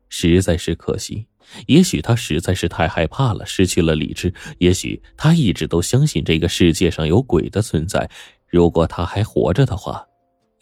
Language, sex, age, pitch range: Chinese, male, 20-39, 85-105 Hz